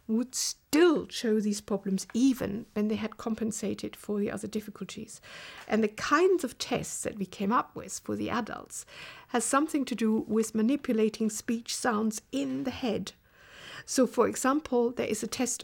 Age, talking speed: 60-79, 175 wpm